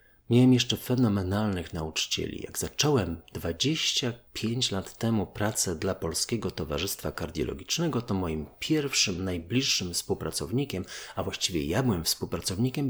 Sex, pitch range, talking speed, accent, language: male, 90-120 Hz, 110 wpm, native, Polish